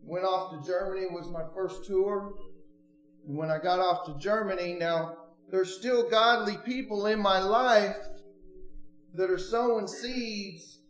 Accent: American